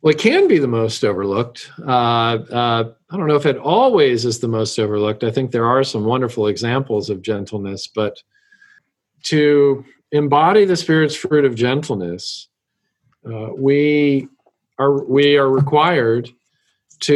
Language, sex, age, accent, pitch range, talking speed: English, male, 50-69, American, 120-150 Hz, 150 wpm